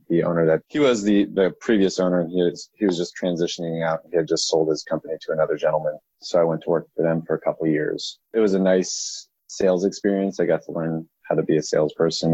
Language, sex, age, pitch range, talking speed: English, male, 30-49, 80-90 Hz, 265 wpm